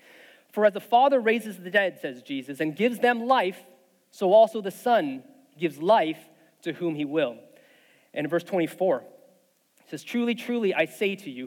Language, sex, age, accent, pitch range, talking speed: English, male, 30-49, American, 165-240 Hz, 185 wpm